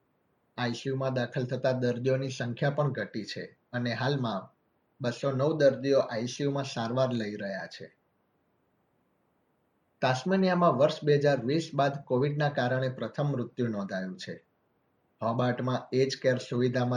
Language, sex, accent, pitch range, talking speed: Gujarati, male, native, 120-140 Hz, 40 wpm